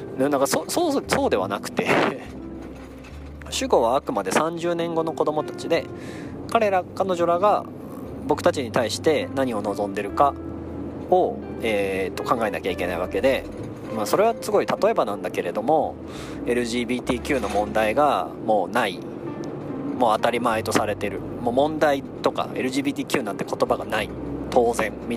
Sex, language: male, Japanese